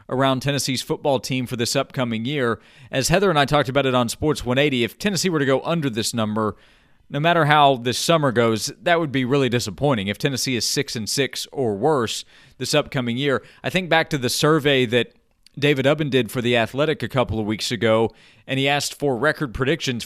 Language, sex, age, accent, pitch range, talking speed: English, male, 40-59, American, 125-155 Hz, 220 wpm